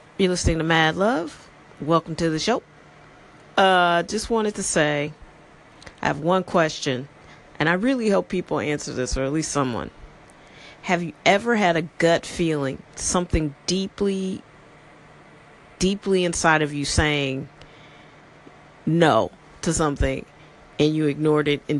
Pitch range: 150-195 Hz